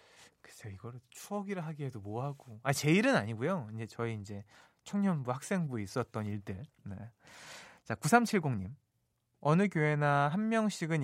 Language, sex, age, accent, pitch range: Korean, male, 20-39, native, 120-185 Hz